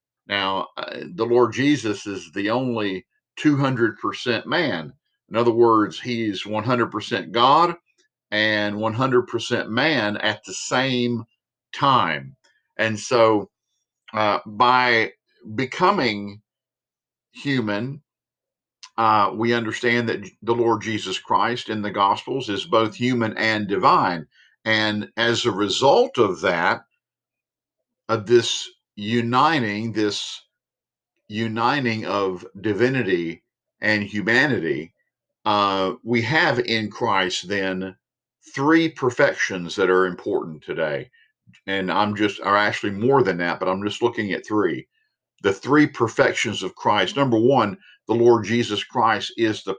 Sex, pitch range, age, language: male, 105-125 Hz, 50-69, English